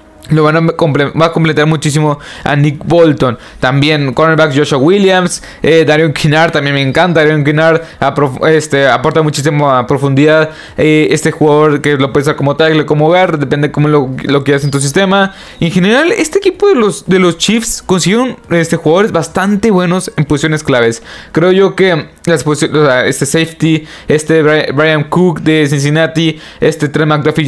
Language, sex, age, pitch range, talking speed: Spanish, male, 20-39, 145-175 Hz, 185 wpm